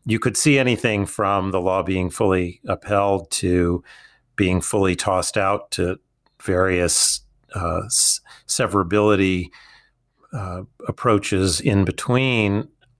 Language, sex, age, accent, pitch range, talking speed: English, male, 40-59, American, 95-115 Hz, 105 wpm